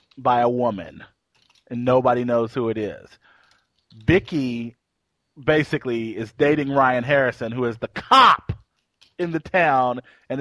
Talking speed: 135 wpm